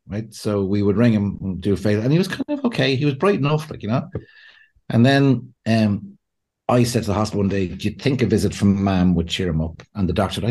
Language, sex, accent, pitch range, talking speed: English, male, Irish, 95-120 Hz, 275 wpm